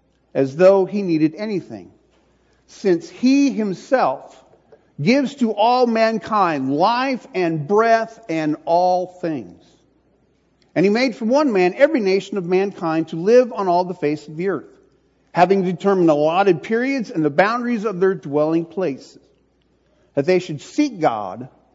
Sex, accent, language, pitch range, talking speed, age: male, American, English, 160-225 Hz, 145 wpm, 50-69